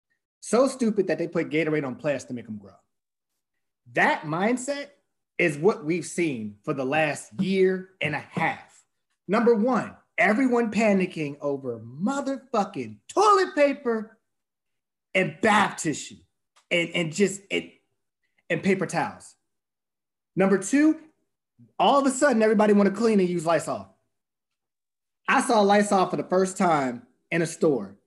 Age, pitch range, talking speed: 30-49, 135-205 Hz, 140 wpm